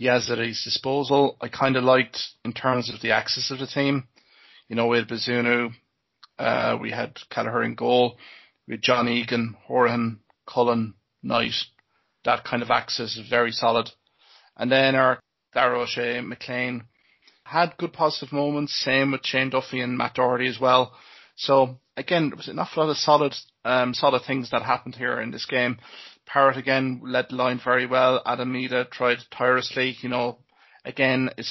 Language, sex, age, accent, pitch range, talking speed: English, male, 30-49, Irish, 120-135 Hz, 170 wpm